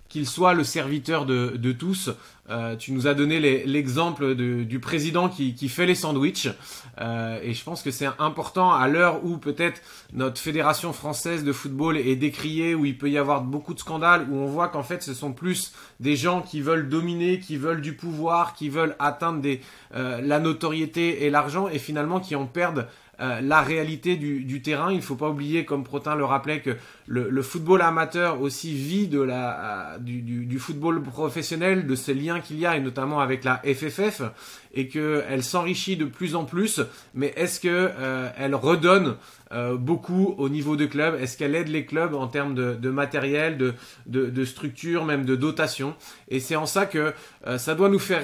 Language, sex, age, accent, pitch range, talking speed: French, male, 30-49, French, 135-165 Hz, 205 wpm